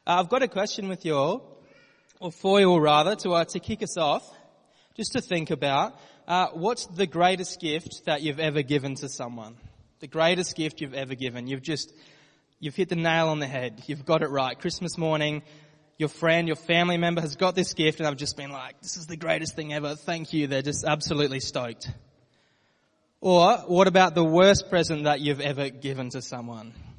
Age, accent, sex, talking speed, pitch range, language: 20-39, Australian, male, 205 wpm, 145-175 Hz, English